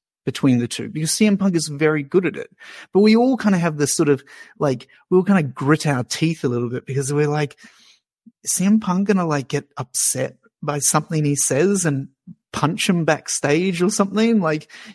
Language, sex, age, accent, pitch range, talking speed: English, male, 30-49, Australian, 130-170 Hz, 210 wpm